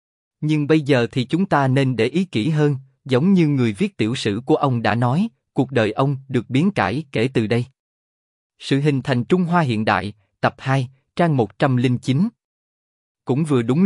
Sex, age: male, 20-39